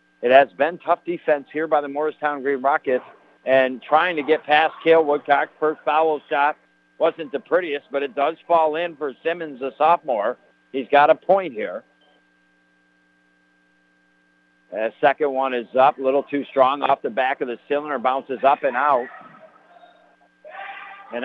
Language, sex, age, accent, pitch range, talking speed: English, male, 60-79, American, 135-170 Hz, 165 wpm